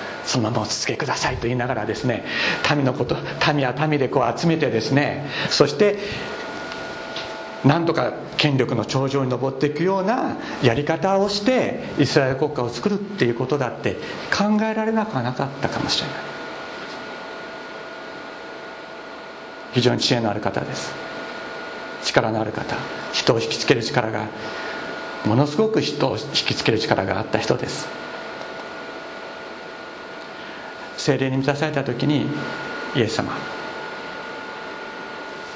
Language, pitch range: Japanese, 125-205 Hz